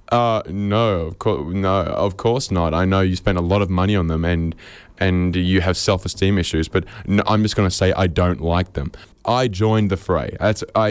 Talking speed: 230 wpm